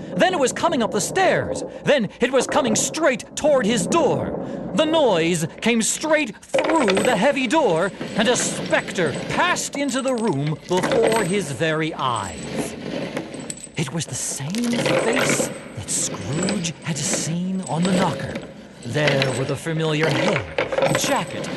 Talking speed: 145 wpm